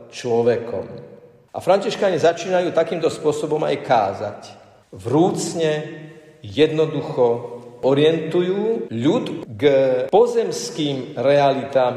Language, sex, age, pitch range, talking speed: Slovak, male, 50-69, 125-175 Hz, 75 wpm